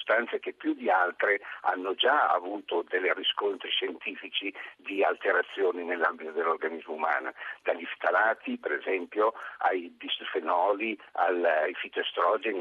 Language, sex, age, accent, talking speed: Italian, male, 50-69, native, 115 wpm